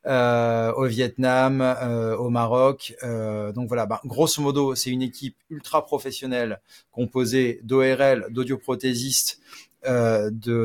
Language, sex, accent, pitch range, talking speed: French, male, French, 115-130 Hz, 125 wpm